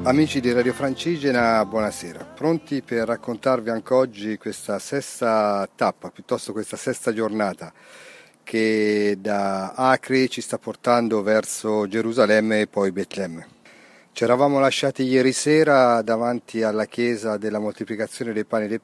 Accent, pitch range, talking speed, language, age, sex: native, 105-125 Hz, 135 wpm, Italian, 40-59, male